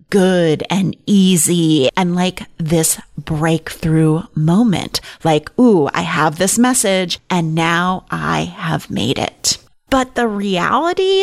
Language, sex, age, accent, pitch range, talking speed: English, female, 30-49, American, 170-240 Hz, 125 wpm